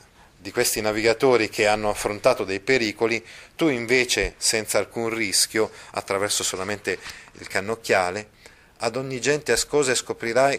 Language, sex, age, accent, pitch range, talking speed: Italian, male, 30-49, native, 100-135 Hz, 125 wpm